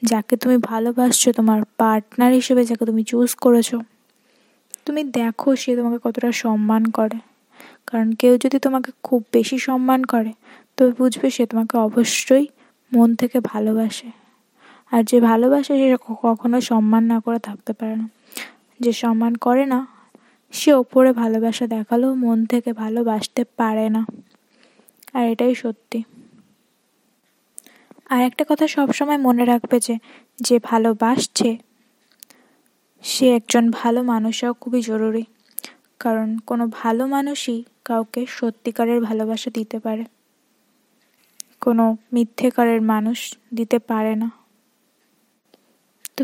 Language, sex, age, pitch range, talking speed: Hindi, female, 20-39, 230-255 Hz, 80 wpm